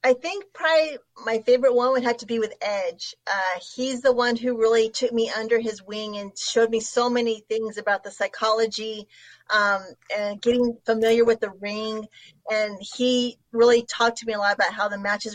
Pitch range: 210-245 Hz